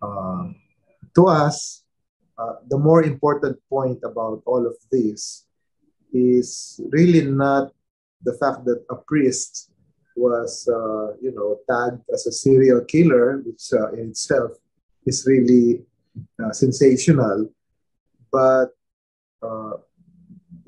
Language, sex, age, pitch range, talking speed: English, male, 30-49, 110-140 Hz, 115 wpm